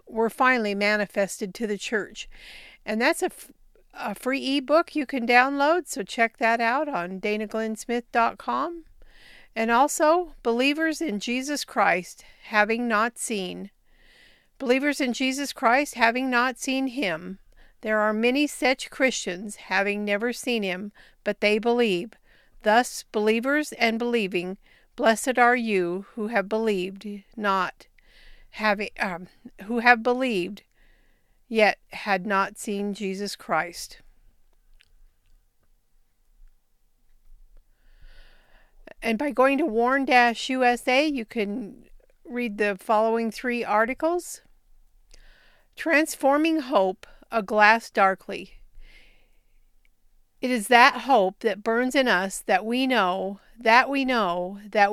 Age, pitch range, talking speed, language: 50-69, 200-255 Hz, 115 wpm, English